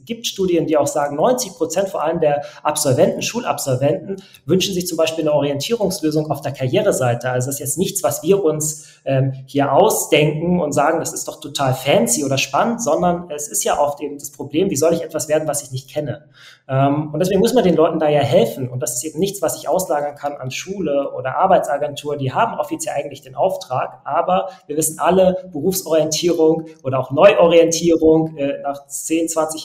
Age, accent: 30-49, German